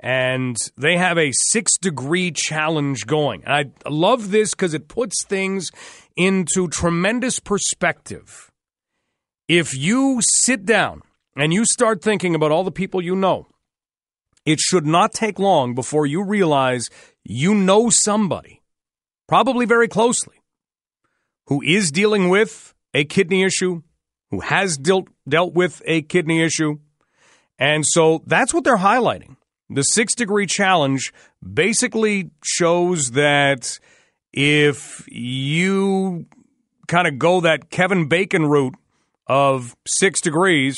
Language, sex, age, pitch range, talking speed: English, male, 40-59, 145-195 Hz, 125 wpm